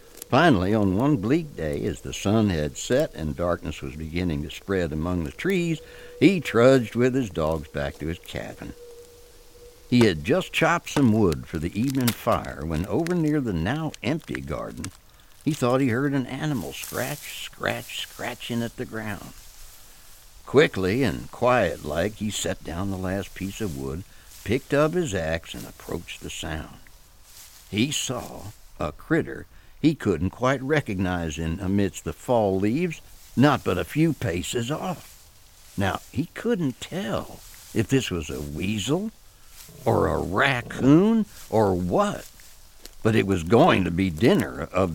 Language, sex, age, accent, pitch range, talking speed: English, male, 60-79, American, 80-130 Hz, 155 wpm